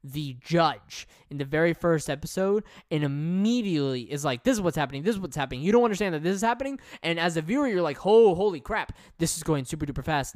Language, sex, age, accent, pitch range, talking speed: English, male, 10-29, American, 135-165 Hz, 235 wpm